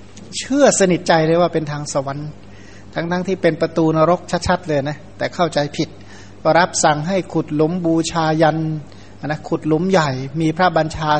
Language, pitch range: Thai, 135-175 Hz